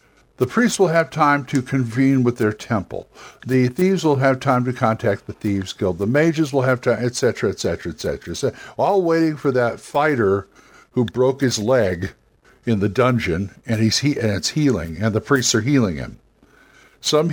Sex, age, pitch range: male, 60-79, 110-140 Hz